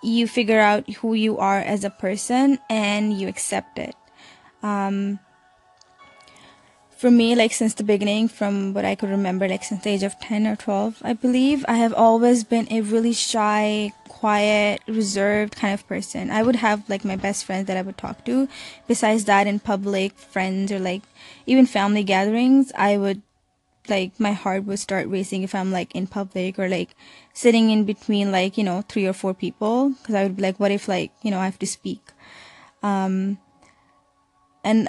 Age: 20-39